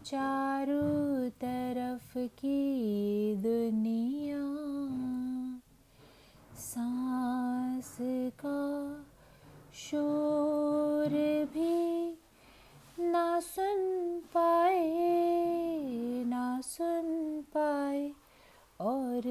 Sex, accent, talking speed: female, native, 45 wpm